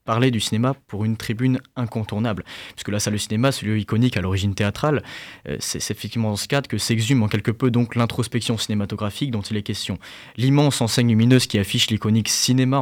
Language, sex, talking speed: French, male, 205 wpm